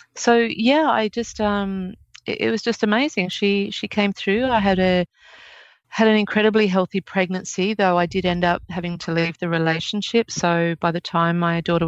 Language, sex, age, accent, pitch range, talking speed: English, female, 30-49, Australian, 170-195 Hz, 190 wpm